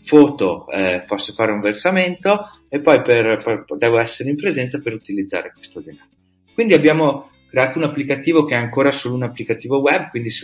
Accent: native